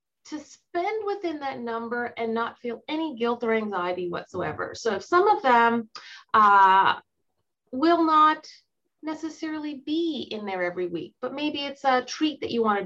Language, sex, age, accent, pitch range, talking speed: English, female, 30-49, American, 215-290 Hz, 165 wpm